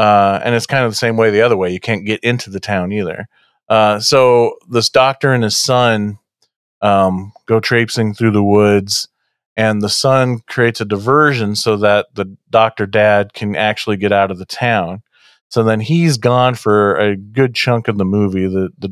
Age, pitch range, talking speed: 40-59, 100-125 Hz, 195 wpm